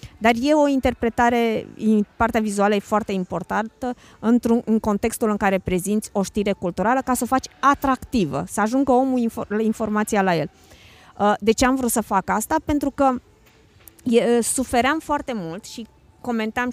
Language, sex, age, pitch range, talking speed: Romanian, female, 20-39, 210-255 Hz, 150 wpm